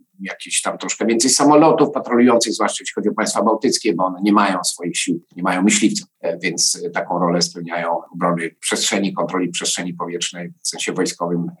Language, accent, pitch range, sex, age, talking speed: Polish, native, 95-145 Hz, male, 50-69, 170 wpm